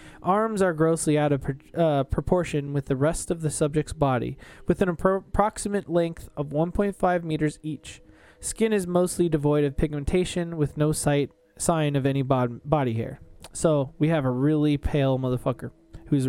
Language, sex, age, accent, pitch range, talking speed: English, male, 20-39, American, 145-180 Hz, 175 wpm